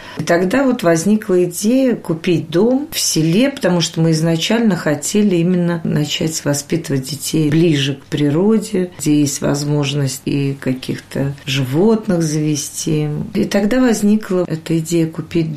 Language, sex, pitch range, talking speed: Russian, female, 150-185 Hz, 130 wpm